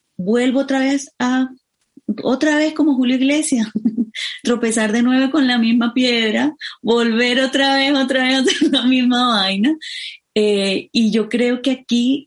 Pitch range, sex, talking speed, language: 185-250 Hz, female, 150 wpm, Spanish